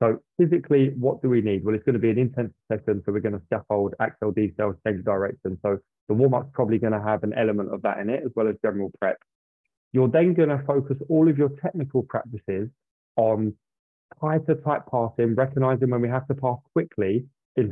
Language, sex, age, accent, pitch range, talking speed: English, male, 20-39, British, 110-135 Hz, 215 wpm